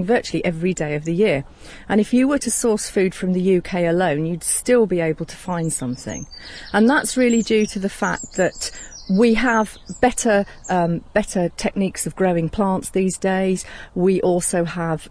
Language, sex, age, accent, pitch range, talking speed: English, female, 40-59, British, 170-210 Hz, 185 wpm